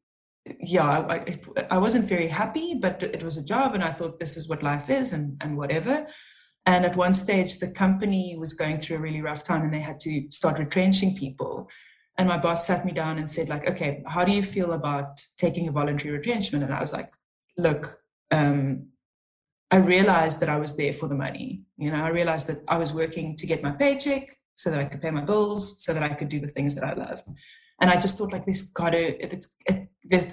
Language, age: English, 20-39